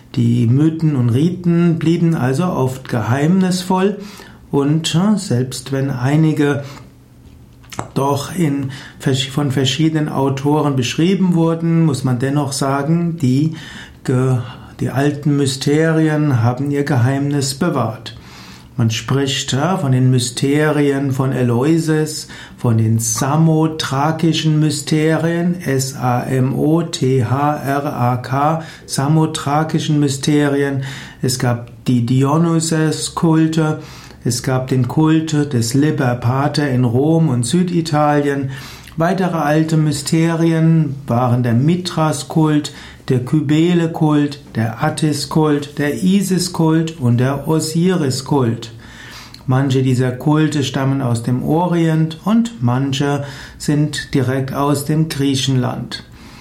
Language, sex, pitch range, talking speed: German, male, 130-155 Hz, 95 wpm